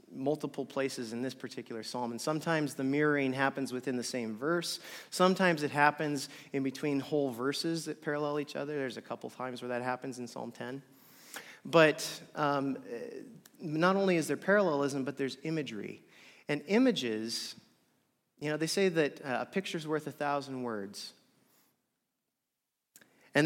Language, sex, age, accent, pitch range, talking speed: English, male, 30-49, American, 130-160 Hz, 155 wpm